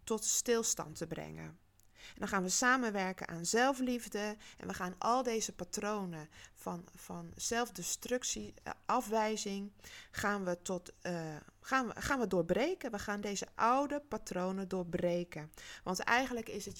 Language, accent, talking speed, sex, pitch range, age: Dutch, Dutch, 145 wpm, female, 175-230 Hz, 20-39